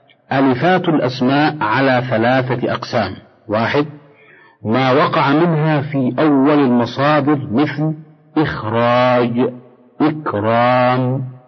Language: Arabic